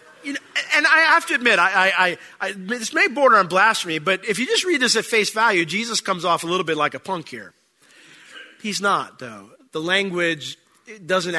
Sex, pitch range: male, 145-200 Hz